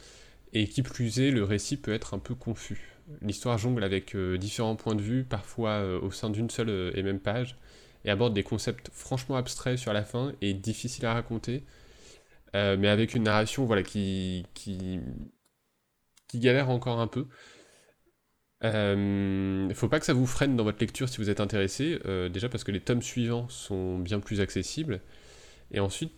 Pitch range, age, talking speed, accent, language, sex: 95-120 Hz, 20-39, 190 wpm, French, French, male